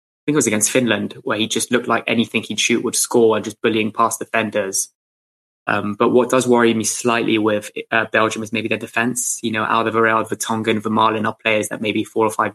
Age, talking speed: 20-39, 230 wpm